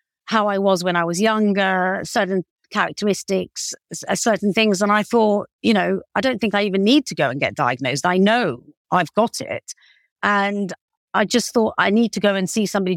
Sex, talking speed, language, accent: female, 200 wpm, English, British